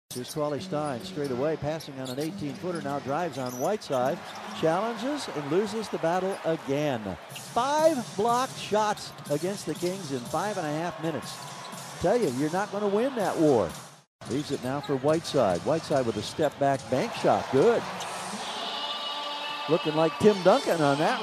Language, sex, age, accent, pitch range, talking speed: English, male, 50-69, American, 145-205 Hz, 165 wpm